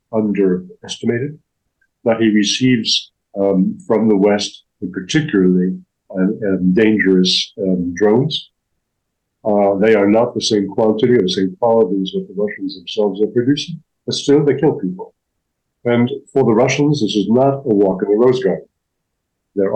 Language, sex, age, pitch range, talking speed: English, male, 50-69, 100-130 Hz, 155 wpm